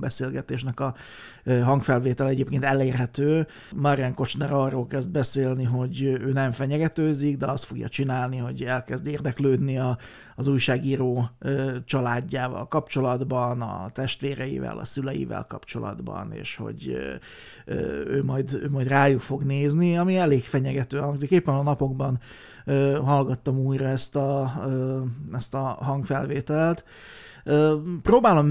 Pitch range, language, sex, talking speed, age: 130-145 Hz, Hungarian, male, 115 wpm, 30-49